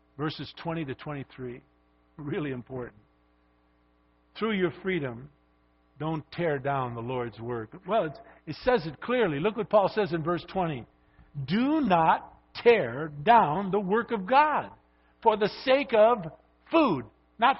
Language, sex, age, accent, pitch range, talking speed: English, male, 50-69, American, 165-245 Hz, 140 wpm